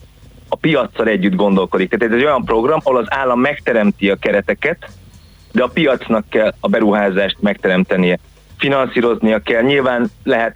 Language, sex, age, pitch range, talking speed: Hungarian, male, 30-49, 100-115 Hz, 140 wpm